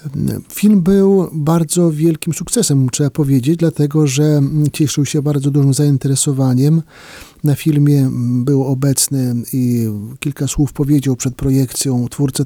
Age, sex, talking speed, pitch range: 40-59, male, 120 wpm, 140-165 Hz